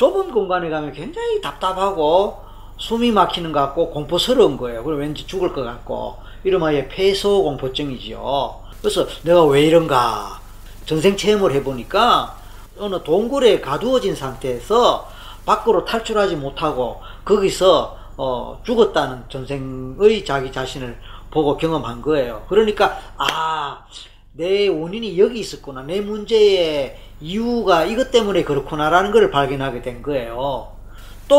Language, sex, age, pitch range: Korean, male, 40-59, 135-210 Hz